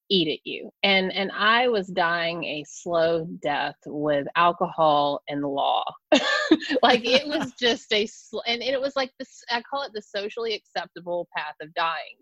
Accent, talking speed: American, 170 wpm